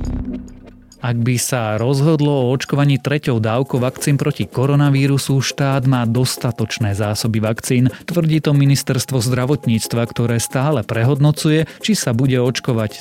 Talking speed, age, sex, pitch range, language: 125 wpm, 30-49, male, 110-140 Hz, Slovak